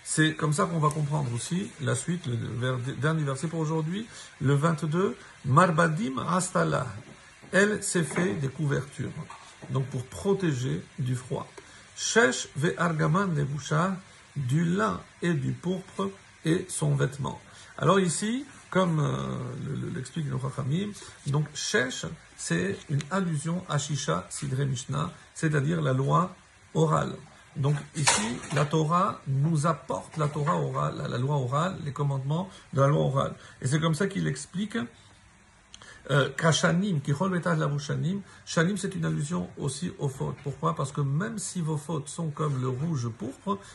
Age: 50-69